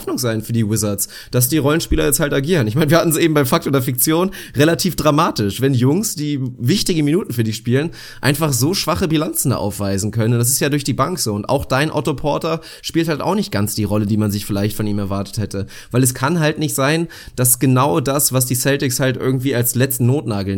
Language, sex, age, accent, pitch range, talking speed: German, male, 30-49, German, 125-165 Hz, 235 wpm